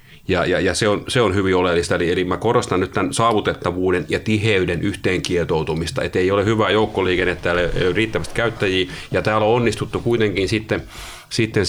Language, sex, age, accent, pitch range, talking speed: Finnish, male, 30-49, native, 90-105 Hz, 175 wpm